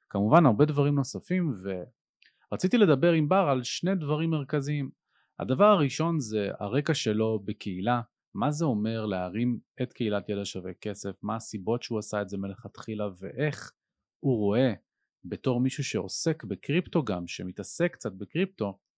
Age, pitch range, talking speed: 30-49, 100-145 Hz, 140 wpm